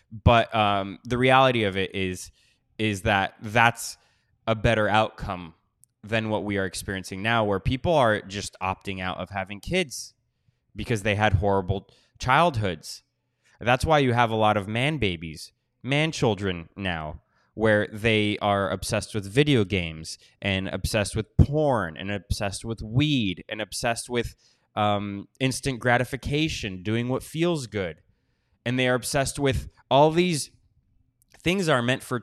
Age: 20-39